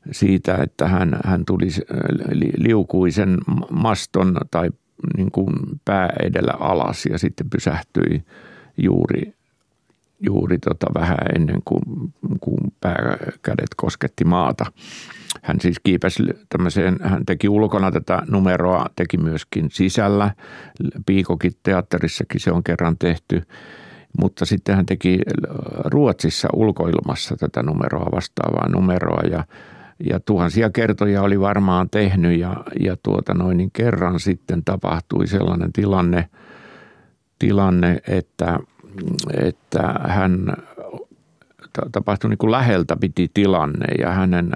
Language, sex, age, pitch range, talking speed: Finnish, male, 50-69, 90-100 Hz, 110 wpm